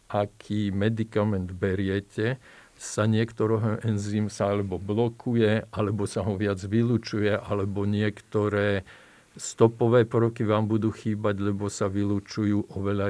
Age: 50-69